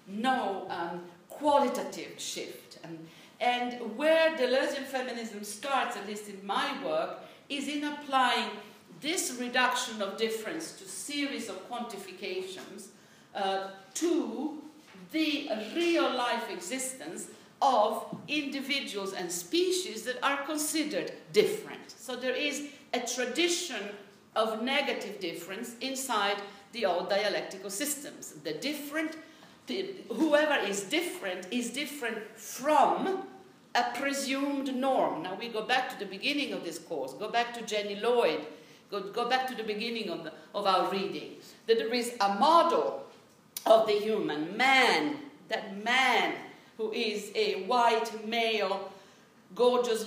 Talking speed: 125 wpm